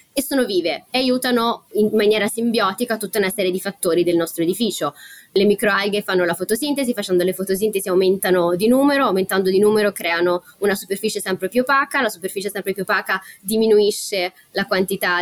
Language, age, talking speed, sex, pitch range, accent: Italian, 20-39, 175 wpm, female, 180-235 Hz, native